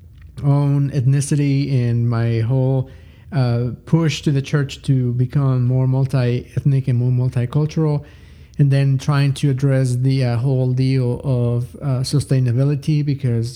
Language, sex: English, male